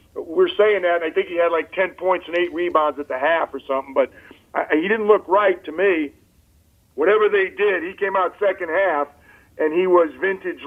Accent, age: American, 50-69